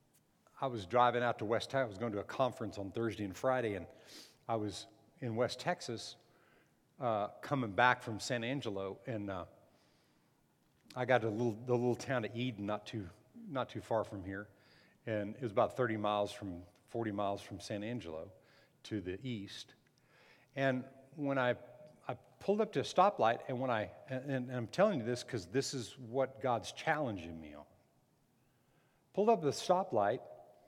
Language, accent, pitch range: English, American, 115-145 Hz